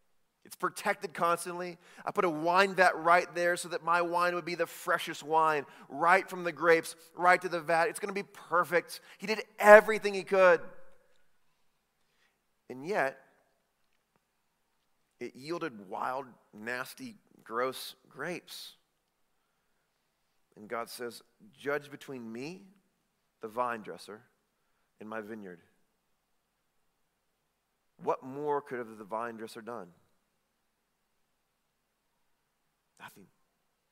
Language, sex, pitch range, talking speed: English, male, 125-185 Hz, 115 wpm